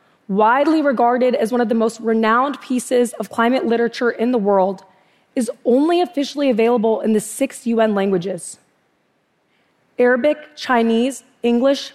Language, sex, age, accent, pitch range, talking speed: English, female, 20-39, American, 215-255 Hz, 135 wpm